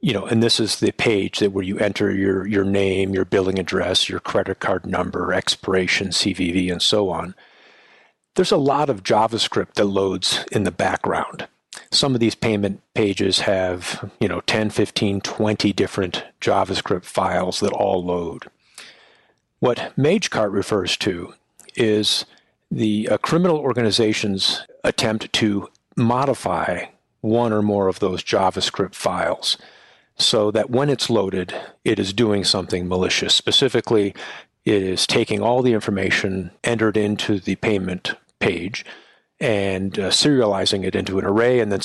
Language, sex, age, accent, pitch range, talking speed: English, male, 40-59, American, 95-115 Hz, 150 wpm